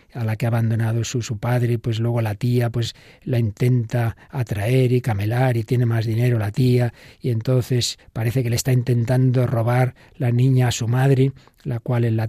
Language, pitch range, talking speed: Spanish, 120-145 Hz, 195 wpm